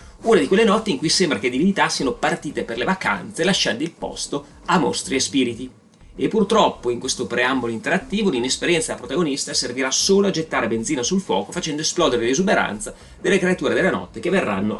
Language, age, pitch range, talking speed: Italian, 30-49, 120-175 Hz, 185 wpm